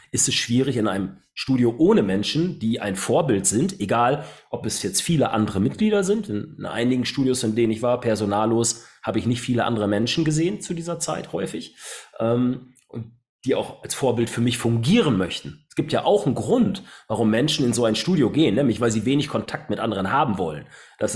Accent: German